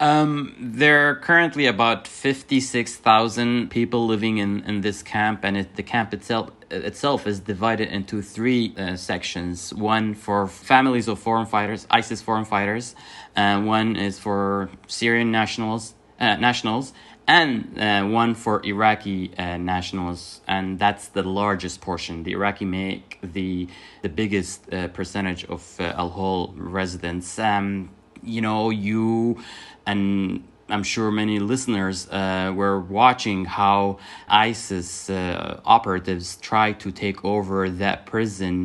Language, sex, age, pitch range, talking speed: English, male, 20-39, 95-110 Hz, 135 wpm